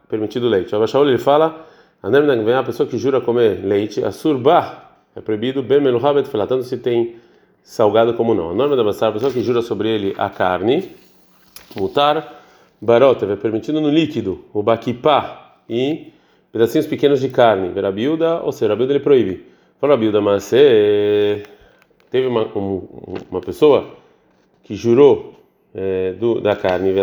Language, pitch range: Portuguese, 105-160 Hz